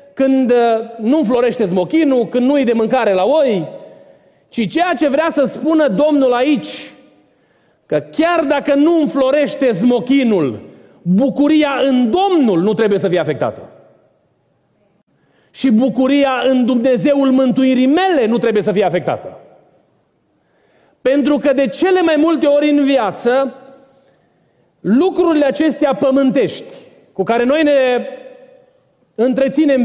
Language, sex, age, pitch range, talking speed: Romanian, male, 40-59, 225-285 Hz, 125 wpm